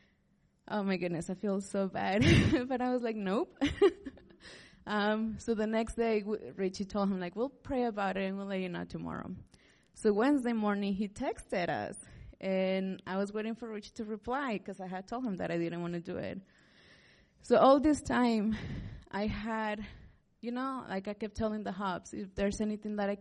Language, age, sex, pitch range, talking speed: English, 20-39, female, 195-245 Hz, 195 wpm